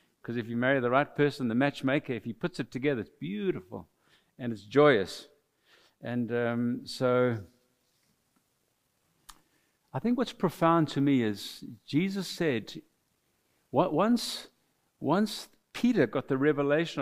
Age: 60-79